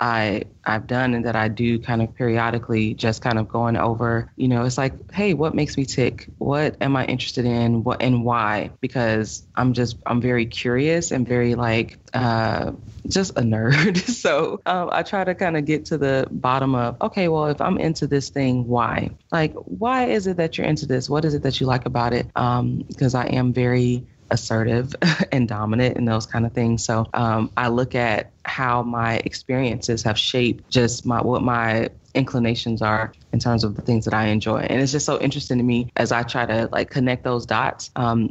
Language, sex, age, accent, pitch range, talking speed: English, female, 20-39, American, 115-150 Hz, 210 wpm